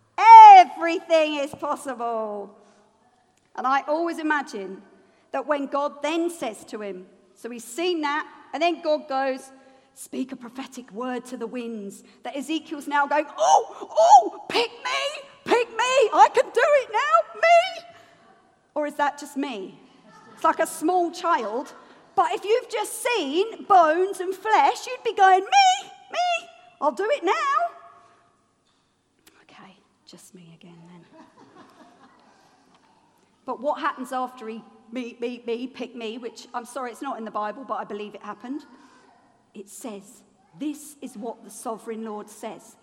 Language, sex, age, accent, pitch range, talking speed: English, female, 40-59, British, 245-350 Hz, 150 wpm